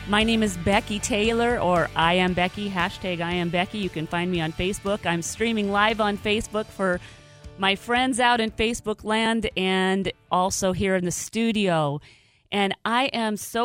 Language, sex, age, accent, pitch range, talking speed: English, female, 40-59, American, 180-230 Hz, 180 wpm